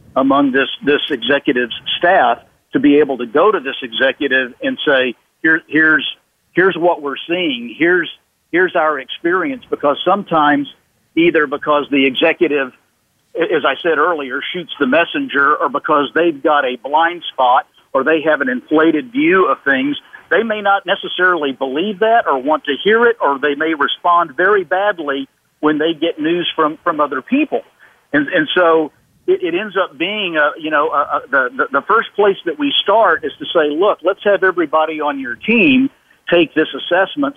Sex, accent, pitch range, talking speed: male, American, 145-230 Hz, 175 wpm